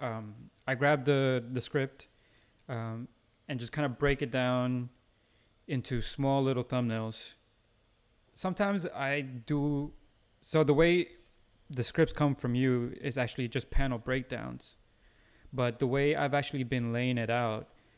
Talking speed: 145 wpm